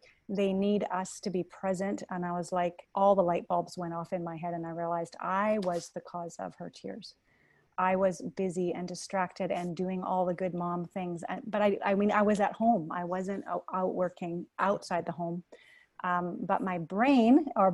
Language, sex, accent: English, female, American